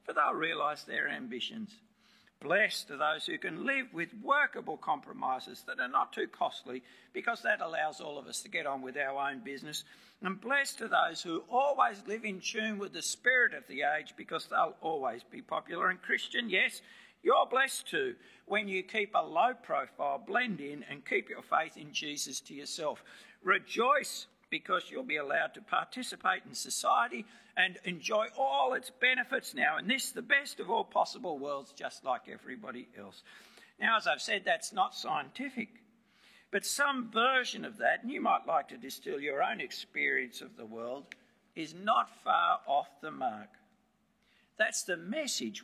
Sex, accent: male, Australian